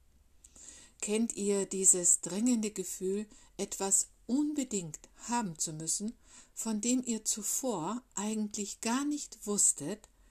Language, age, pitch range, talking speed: German, 60-79, 175-225 Hz, 105 wpm